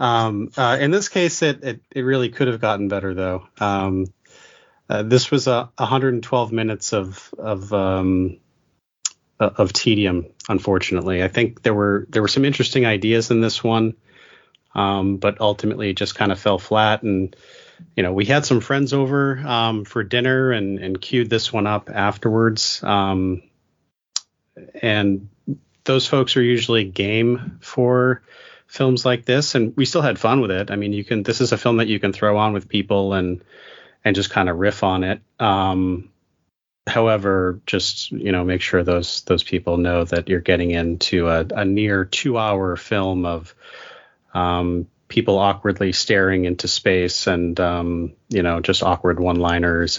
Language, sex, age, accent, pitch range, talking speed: English, male, 30-49, American, 95-115 Hz, 170 wpm